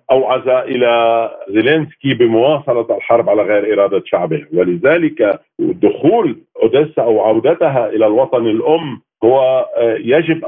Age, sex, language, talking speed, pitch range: 50-69, male, Arabic, 110 wpm, 115-150 Hz